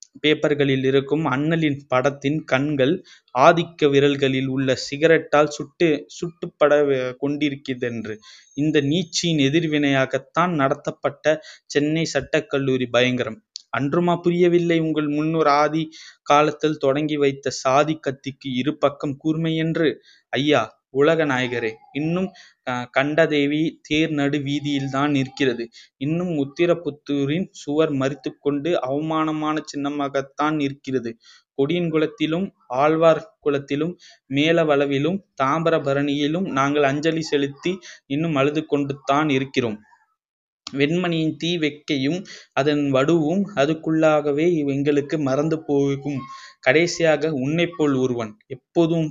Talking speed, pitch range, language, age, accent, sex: 90 wpm, 135-160 Hz, Tamil, 20-39, native, male